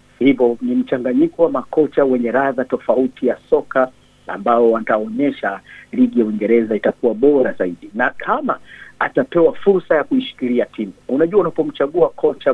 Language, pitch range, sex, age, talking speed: Swahili, 125-195 Hz, male, 50-69, 135 wpm